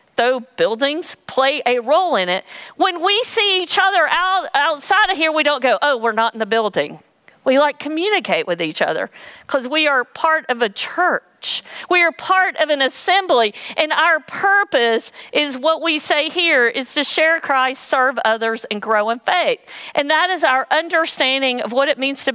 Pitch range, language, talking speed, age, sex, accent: 240-315 Hz, English, 190 wpm, 50-69, female, American